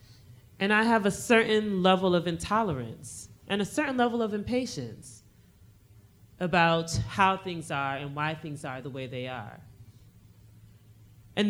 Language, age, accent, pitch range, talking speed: English, 30-49, American, 130-195 Hz, 140 wpm